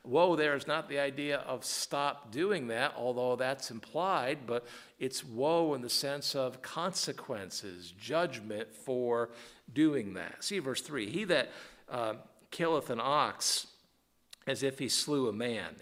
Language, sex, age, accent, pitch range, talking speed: English, male, 50-69, American, 115-135 Hz, 150 wpm